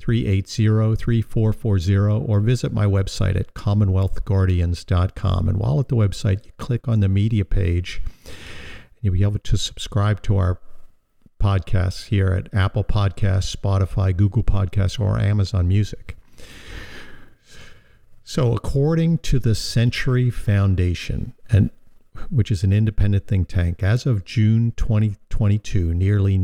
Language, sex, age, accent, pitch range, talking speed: English, male, 50-69, American, 95-110 Hz, 125 wpm